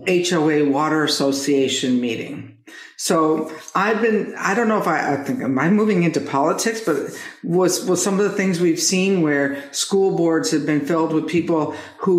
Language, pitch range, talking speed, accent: English, 155-205 Hz, 180 wpm, American